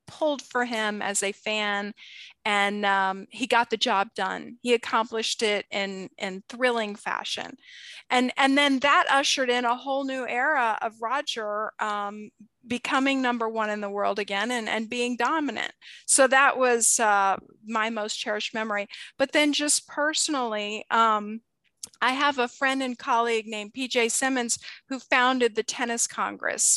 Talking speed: 160 wpm